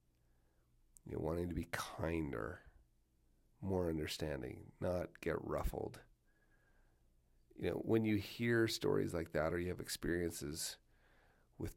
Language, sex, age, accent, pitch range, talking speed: English, male, 30-49, American, 75-100 Hz, 120 wpm